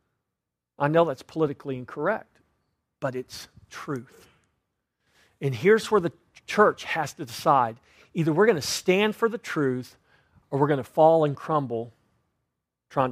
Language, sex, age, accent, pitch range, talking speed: English, male, 40-59, American, 120-165 Hz, 145 wpm